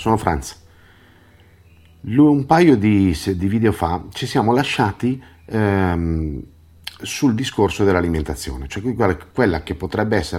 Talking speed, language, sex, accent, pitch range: 115 wpm, Italian, male, native, 80-105 Hz